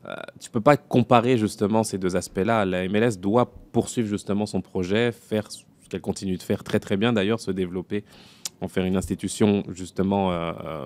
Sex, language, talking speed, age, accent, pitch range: male, French, 200 wpm, 20-39, French, 95-115 Hz